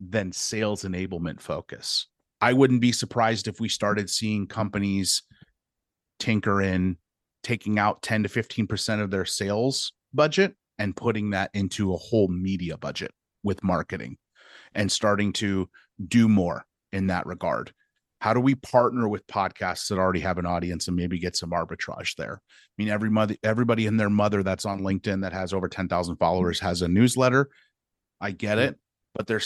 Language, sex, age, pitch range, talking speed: English, male, 30-49, 95-110 Hz, 170 wpm